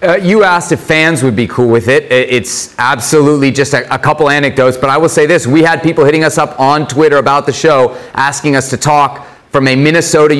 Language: English